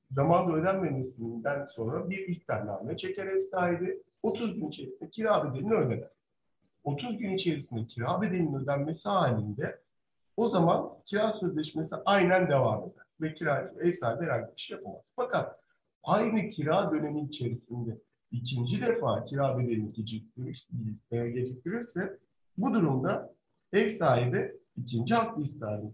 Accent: native